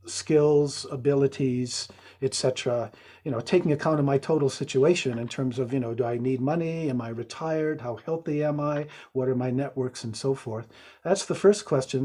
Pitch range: 130-165 Hz